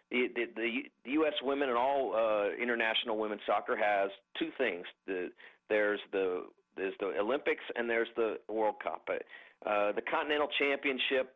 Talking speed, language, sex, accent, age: 155 wpm, English, male, American, 50-69